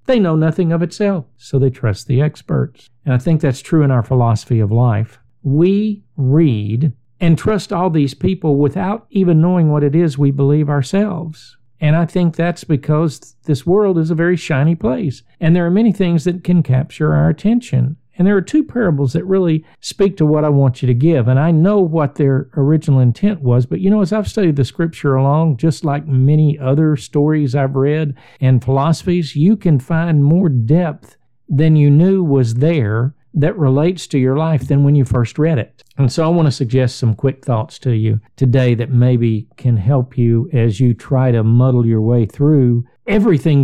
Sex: male